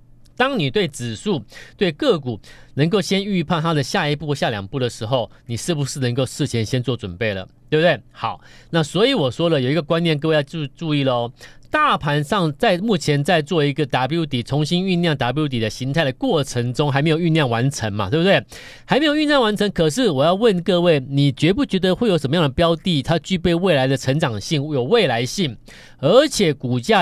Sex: male